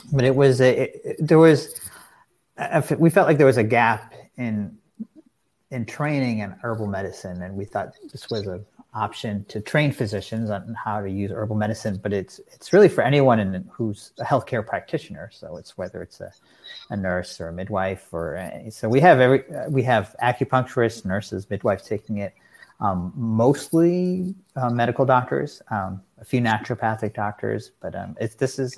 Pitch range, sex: 100-125 Hz, male